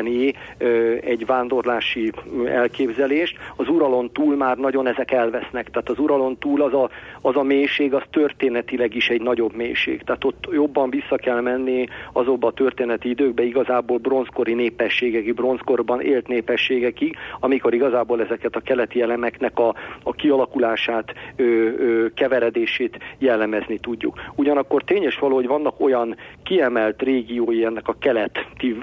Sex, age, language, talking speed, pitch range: male, 50-69, Hungarian, 135 wpm, 120-135 Hz